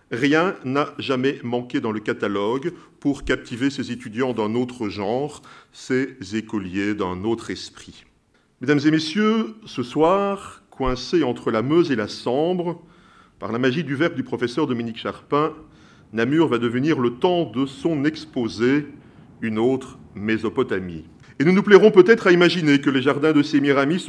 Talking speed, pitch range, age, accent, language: 160 wpm, 125-170 Hz, 40-59, French, French